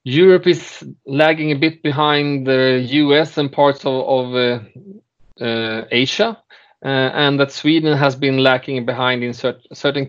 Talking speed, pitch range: 155 wpm, 120-145 Hz